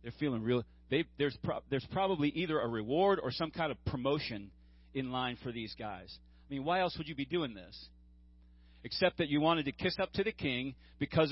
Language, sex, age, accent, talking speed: English, male, 40-59, American, 205 wpm